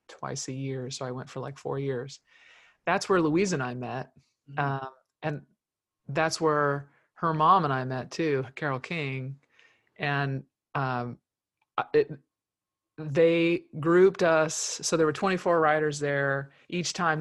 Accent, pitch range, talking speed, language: American, 135-160 Hz, 145 wpm, English